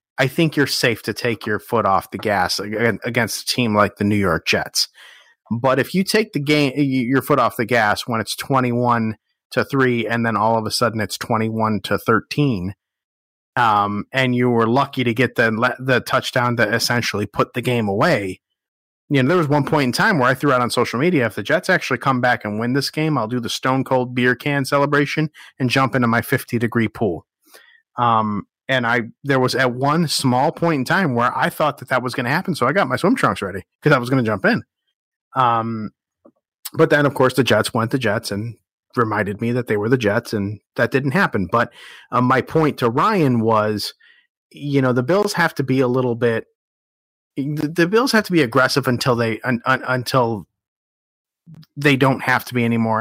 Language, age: English, 30-49